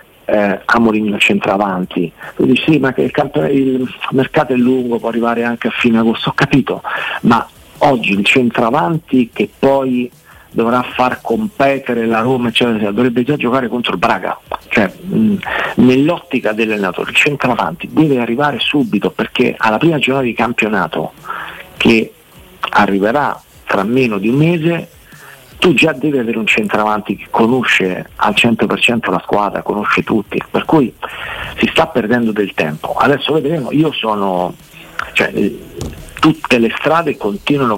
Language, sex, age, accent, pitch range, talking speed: Italian, male, 50-69, native, 105-135 Hz, 150 wpm